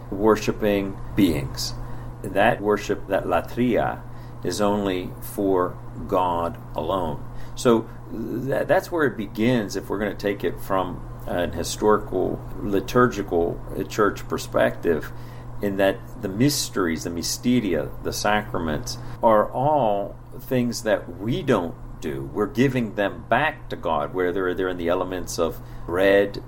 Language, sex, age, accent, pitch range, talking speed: English, male, 50-69, American, 100-120 Hz, 125 wpm